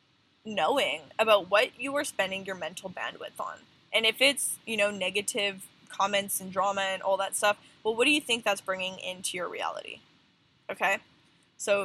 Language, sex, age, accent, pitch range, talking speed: English, female, 10-29, American, 195-250 Hz, 175 wpm